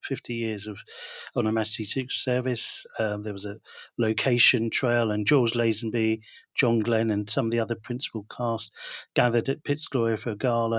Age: 40-59